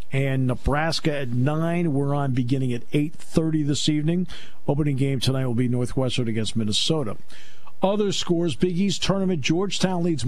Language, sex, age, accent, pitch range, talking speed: English, male, 50-69, American, 130-170 Hz, 150 wpm